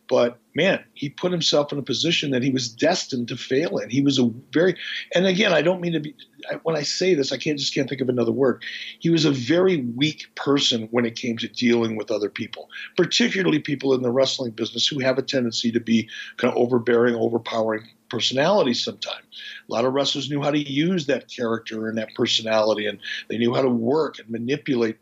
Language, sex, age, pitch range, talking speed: English, male, 50-69, 120-155 Hz, 225 wpm